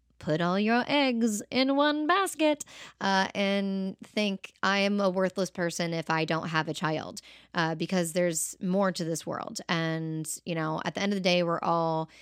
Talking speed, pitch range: 190 wpm, 160-195 Hz